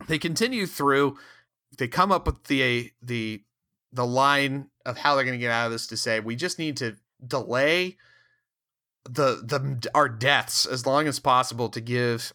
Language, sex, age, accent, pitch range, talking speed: English, male, 30-49, American, 115-145 Hz, 185 wpm